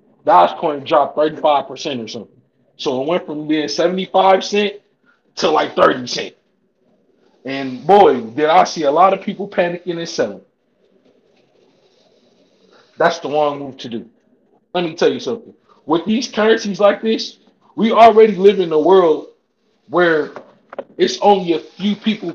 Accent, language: American, English